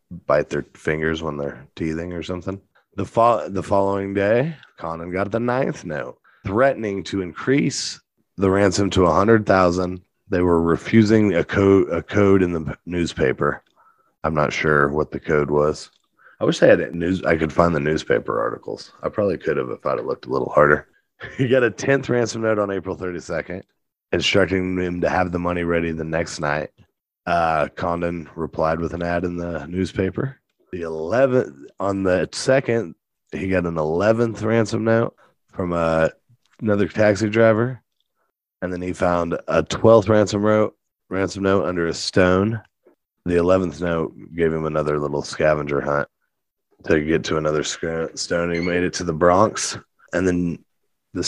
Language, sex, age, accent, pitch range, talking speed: English, male, 30-49, American, 85-105 Hz, 170 wpm